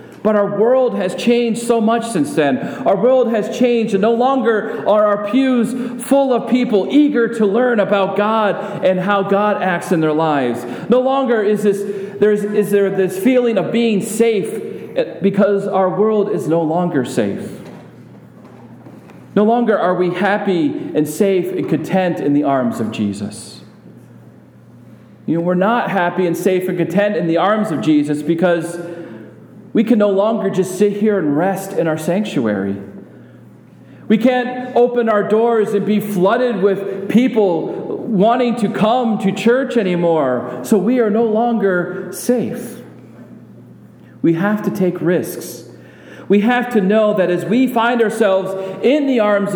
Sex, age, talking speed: male, 40-59, 160 wpm